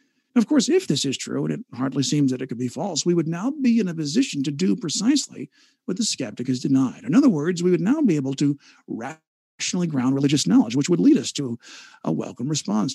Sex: male